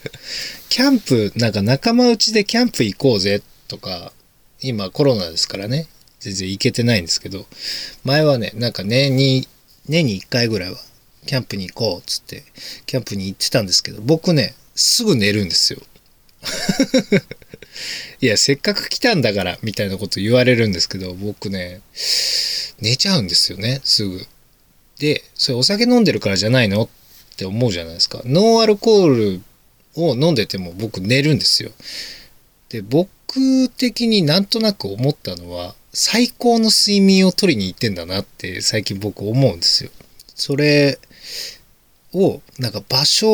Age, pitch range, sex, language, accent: 20-39, 105-170 Hz, male, Japanese, native